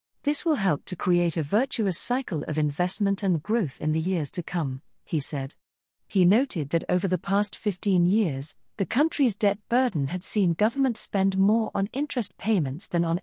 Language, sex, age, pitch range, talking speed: English, female, 40-59, 165-225 Hz, 185 wpm